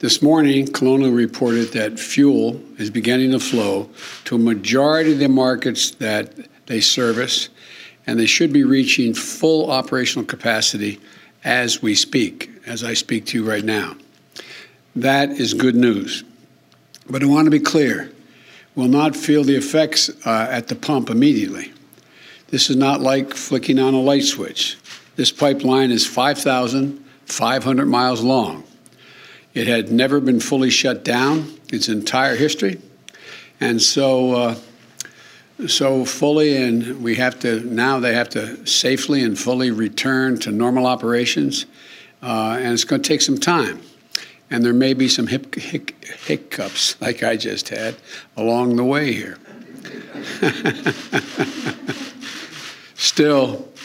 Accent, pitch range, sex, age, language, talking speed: American, 120-140 Hz, male, 60-79, English, 140 wpm